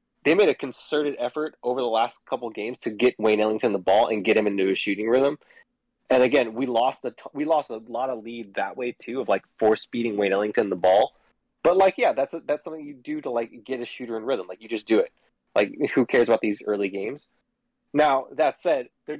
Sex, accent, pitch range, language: male, American, 110-150 Hz, English